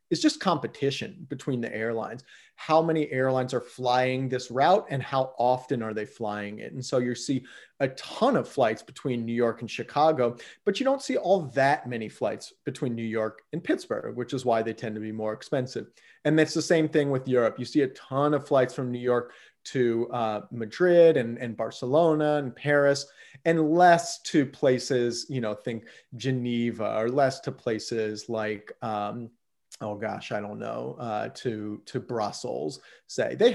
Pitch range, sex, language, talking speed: 120-165 Hz, male, English, 185 wpm